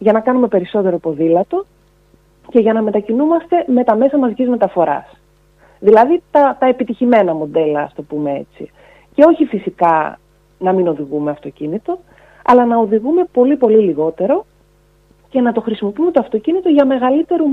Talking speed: 150 wpm